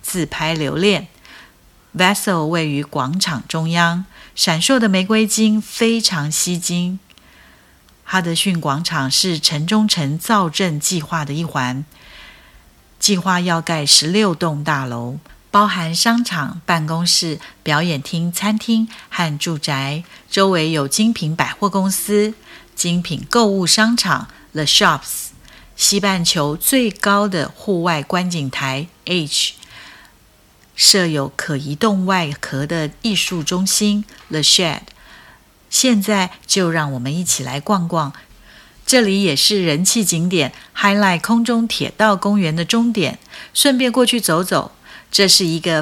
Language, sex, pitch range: Chinese, female, 155-205 Hz